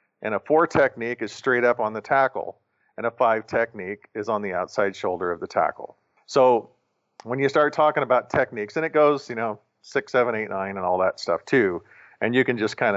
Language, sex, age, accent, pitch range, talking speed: English, male, 40-59, American, 105-135 Hz, 220 wpm